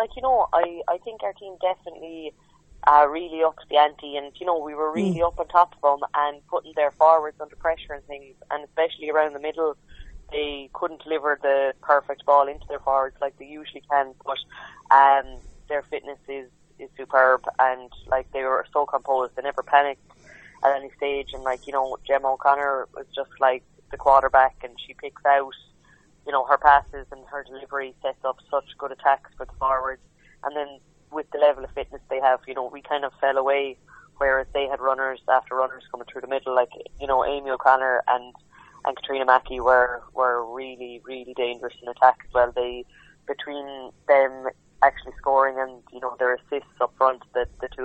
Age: 20-39